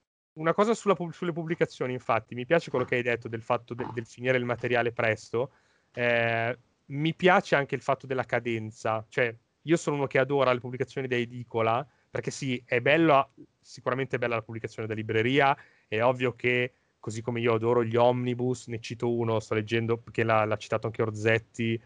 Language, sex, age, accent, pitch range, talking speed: Italian, male, 30-49, native, 110-130 Hz, 190 wpm